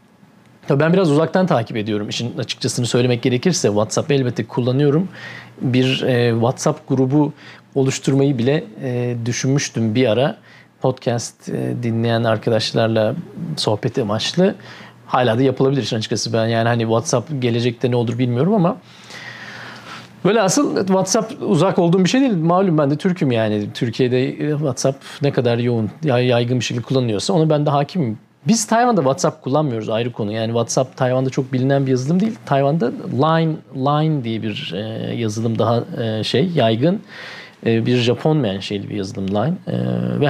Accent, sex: native, male